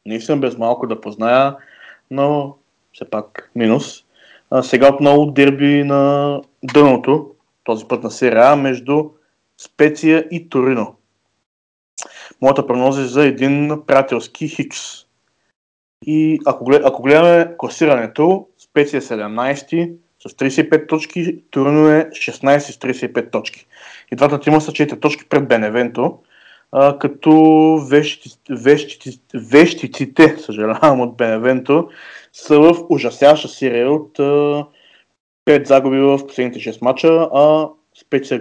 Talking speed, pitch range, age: 120 wpm, 125-150 Hz, 20-39